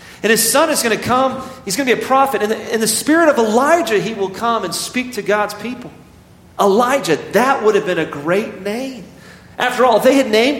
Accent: American